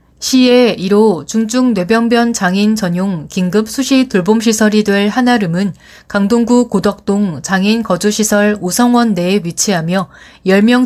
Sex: female